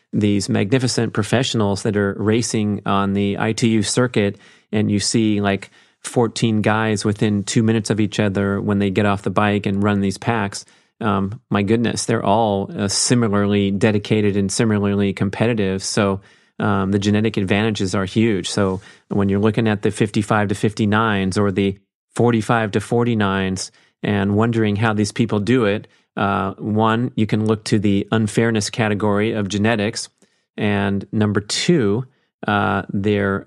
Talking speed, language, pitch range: 155 wpm, English, 100-115 Hz